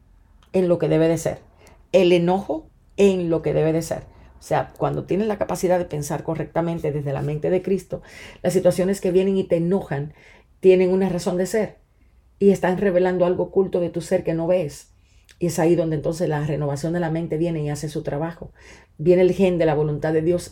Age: 40-59